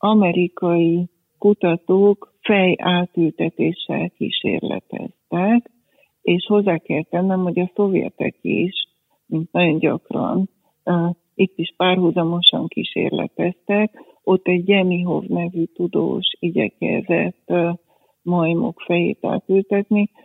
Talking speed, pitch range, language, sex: 90 wpm, 170-195 Hz, Hungarian, female